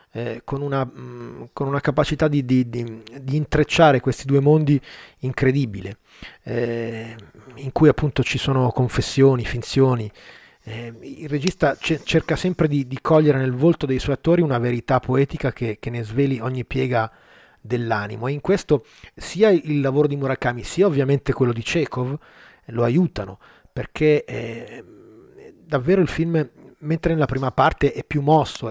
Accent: native